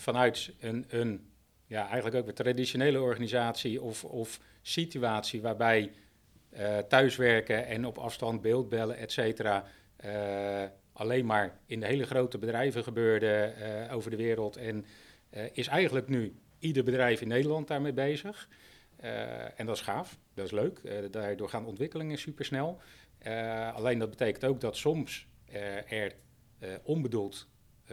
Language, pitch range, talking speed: Dutch, 105-125 Hz, 145 wpm